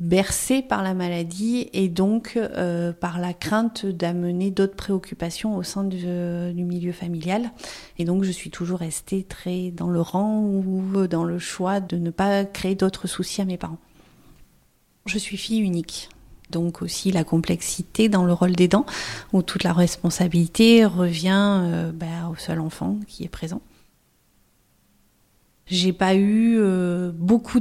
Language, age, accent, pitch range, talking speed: French, 30-49, French, 175-195 Hz, 160 wpm